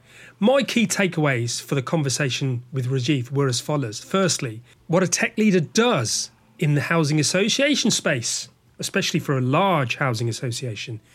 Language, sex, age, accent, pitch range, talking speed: English, male, 30-49, British, 130-180 Hz, 150 wpm